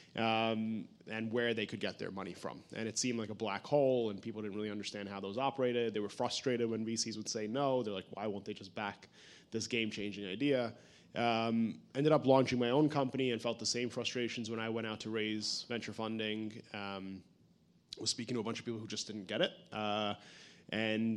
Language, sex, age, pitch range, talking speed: English, male, 20-39, 110-125 Hz, 220 wpm